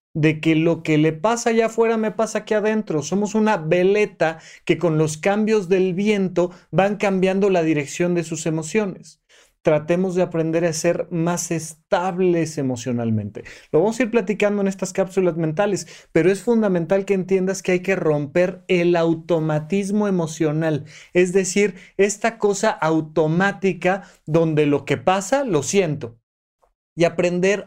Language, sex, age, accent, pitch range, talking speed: Spanish, male, 30-49, Mexican, 150-200 Hz, 150 wpm